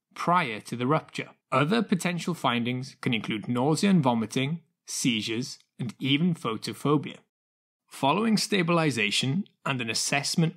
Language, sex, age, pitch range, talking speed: English, male, 20-39, 125-180 Hz, 120 wpm